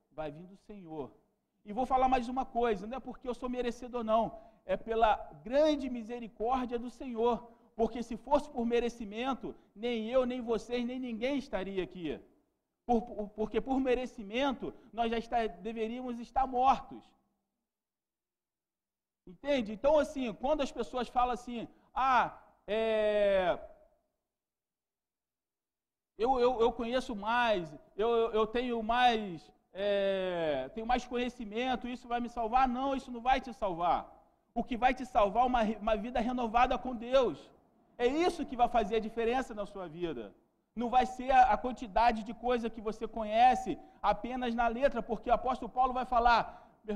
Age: 40-59